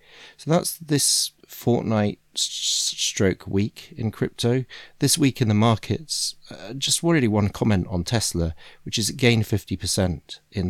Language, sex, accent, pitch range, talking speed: English, male, British, 90-115 Hz, 150 wpm